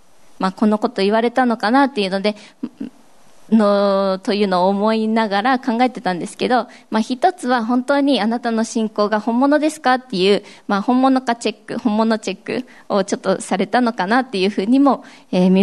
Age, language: 20-39, Japanese